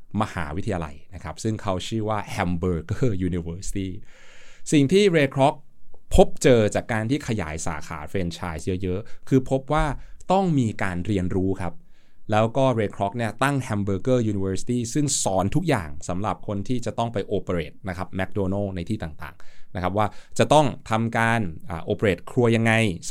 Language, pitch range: Thai, 90-120 Hz